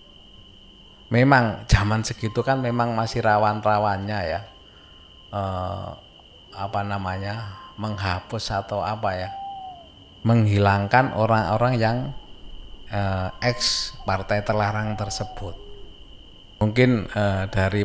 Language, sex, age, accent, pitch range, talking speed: Indonesian, male, 20-39, native, 100-120 Hz, 90 wpm